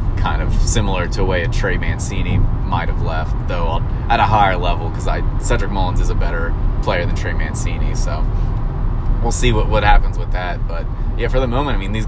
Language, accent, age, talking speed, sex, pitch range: English, American, 20-39, 220 wpm, male, 95-115 Hz